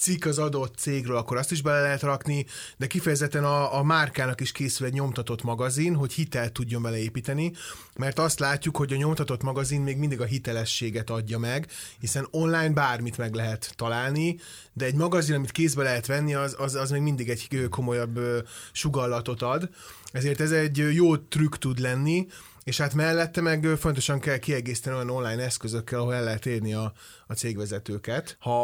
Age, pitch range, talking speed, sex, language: 30-49, 120-145 Hz, 175 wpm, male, Hungarian